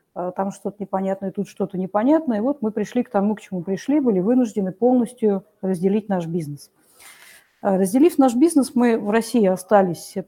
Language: Russian